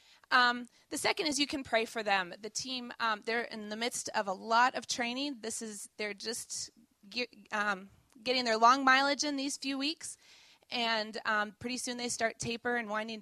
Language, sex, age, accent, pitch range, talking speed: English, female, 20-39, American, 215-255 Hz, 195 wpm